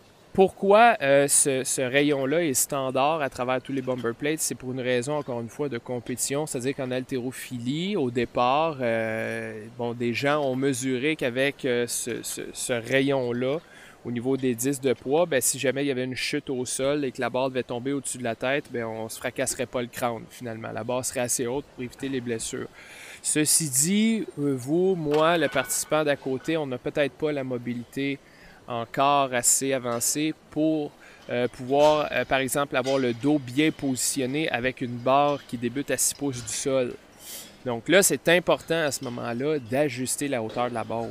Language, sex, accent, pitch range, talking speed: French, male, Canadian, 120-140 Hz, 195 wpm